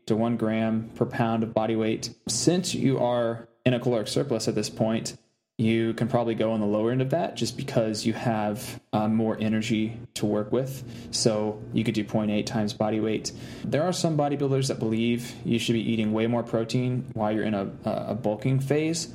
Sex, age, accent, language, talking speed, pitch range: male, 20-39, American, English, 205 wpm, 110-125 Hz